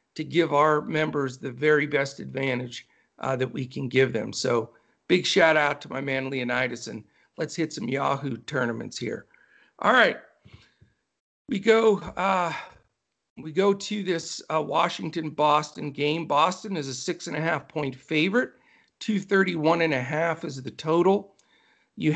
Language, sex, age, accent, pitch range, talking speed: English, male, 50-69, American, 145-180 Hz, 140 wpm